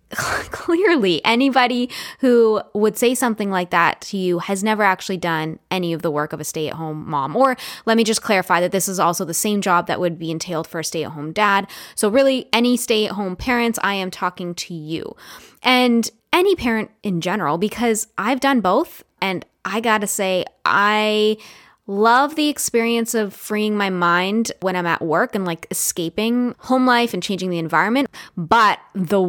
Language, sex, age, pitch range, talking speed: English, female, 10-29, 180-235 Hz, 180 wpm